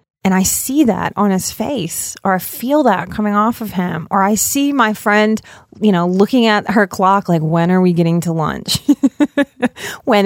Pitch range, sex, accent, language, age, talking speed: 180-230 Hz, female, American, English, 30-49, 200 wpm